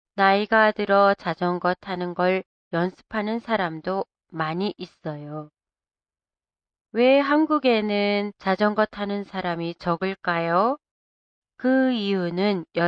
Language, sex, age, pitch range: Japanese, female, 30-49, 175-225 Hz